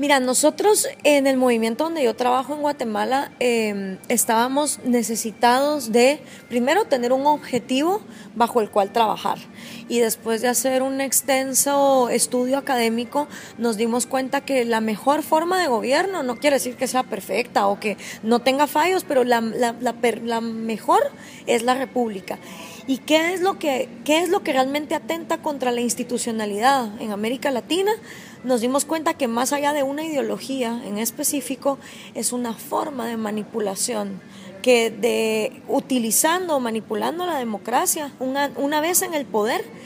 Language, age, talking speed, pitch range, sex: Spanish, 20-39, 160 wpm, 230-285 Hz, female